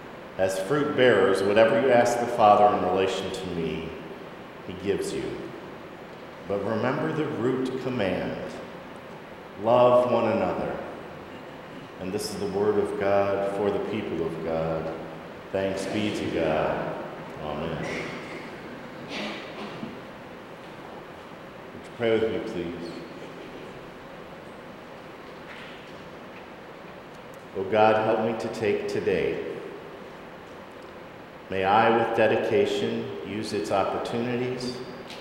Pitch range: 95-125 Hz